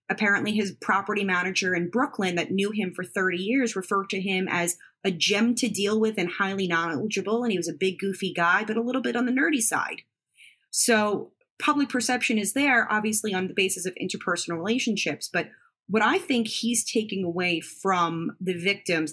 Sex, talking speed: female, 190 wpm